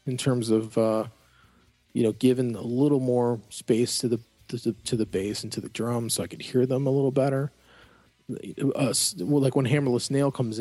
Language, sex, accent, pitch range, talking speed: English, male, American, 110-130 Hz, 210 wpm